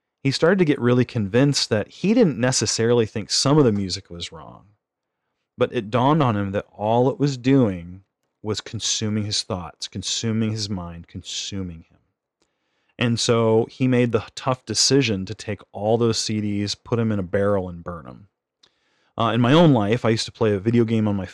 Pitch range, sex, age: 105-130 Hz, male, 30-49